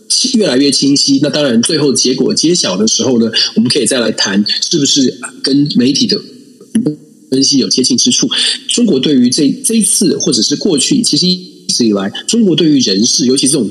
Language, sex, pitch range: Chinese, male, 130-210 Hz